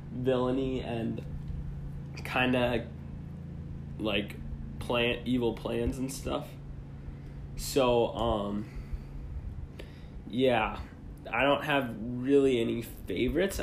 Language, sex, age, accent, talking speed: English, male, 20-39, American, 85 wpm